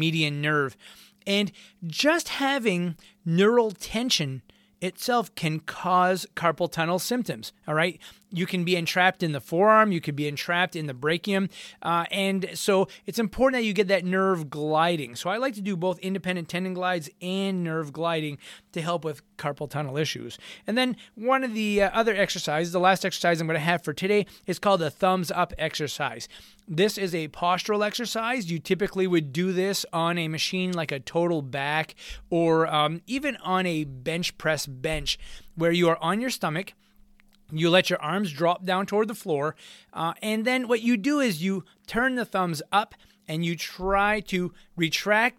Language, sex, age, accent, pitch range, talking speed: English, male, 30-49, American, 165-205 Hz, 180 wpm